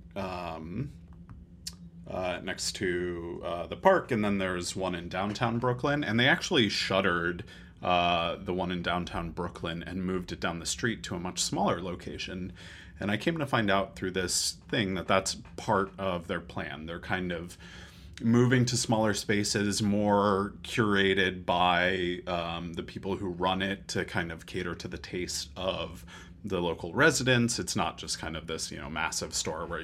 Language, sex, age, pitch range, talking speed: English, male, 30-49, 85-100 Hz, 175 wpm